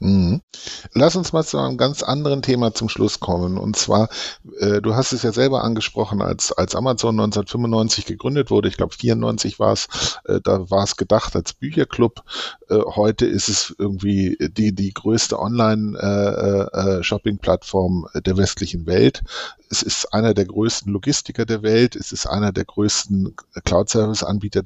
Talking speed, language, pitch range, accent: 165 wpm, German, 95-110 Hz, German